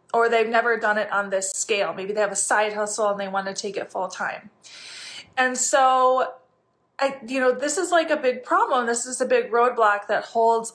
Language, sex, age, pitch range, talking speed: English, female, 20-39, 210-260 Hz, 220 wpm